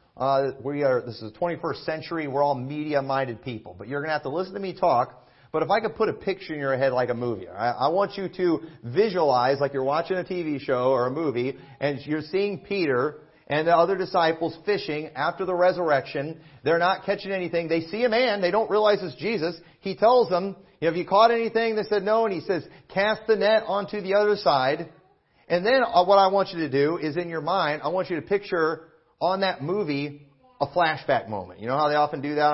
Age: 40-59